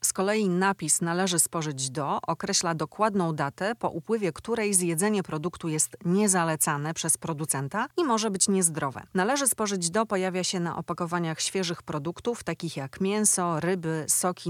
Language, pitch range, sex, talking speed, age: Polish, 150-185 Hz, female, 150 wpm, 30-49